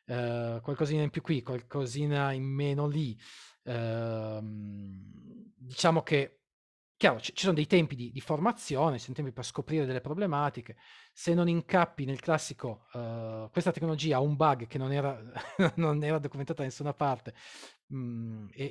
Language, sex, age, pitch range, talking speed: Italian, male, 30-49, 120-160 Hz, 145 wpm